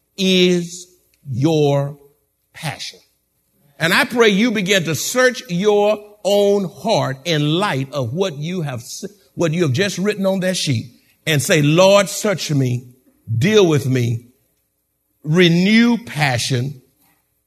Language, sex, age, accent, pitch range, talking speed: English, male, 50-69, American, 130-180 Hz, 125 wpm